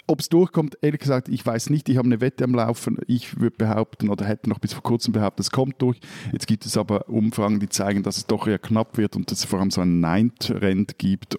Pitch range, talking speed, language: 105-135 Hz, 260 wpm, German